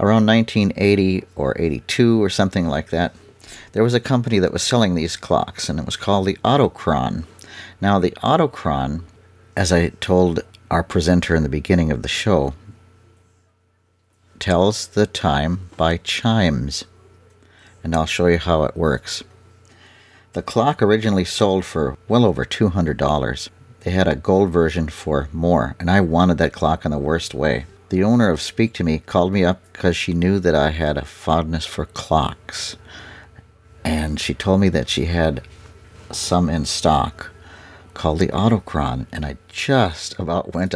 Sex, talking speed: male, 160 wpm